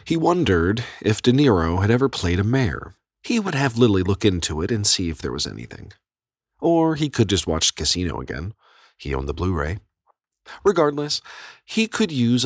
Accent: American